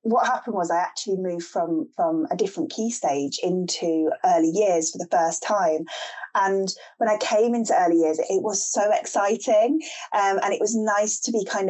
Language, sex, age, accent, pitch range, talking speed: English, female, 20-39, British, 175-240 Hz, 195 wpm